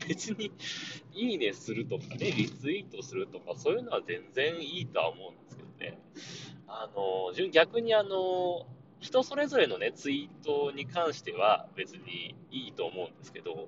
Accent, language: native, Japanese